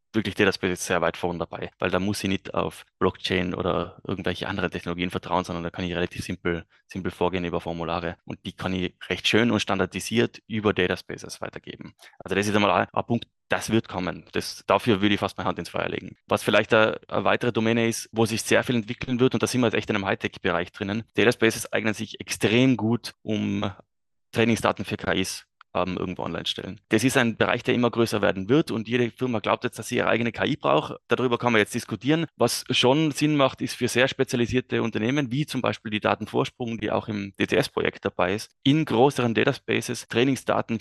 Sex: male